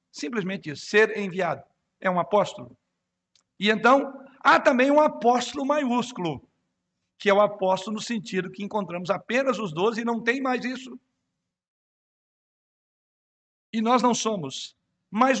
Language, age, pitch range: Portuguese, 60-79, 160-220 Hz